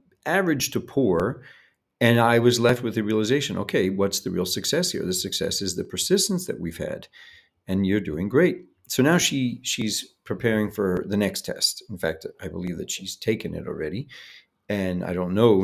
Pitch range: 95-120 Hz